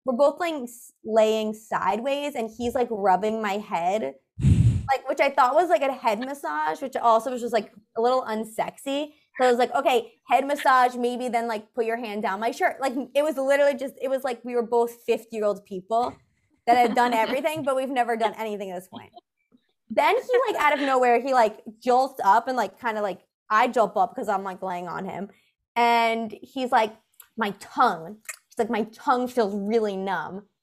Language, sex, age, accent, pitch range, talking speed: English, female, 20-39, American, 225-285 Hz, 210 wpm